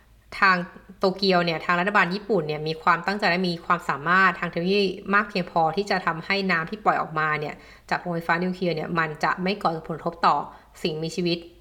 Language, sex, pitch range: Thai, female, 170-215 Hz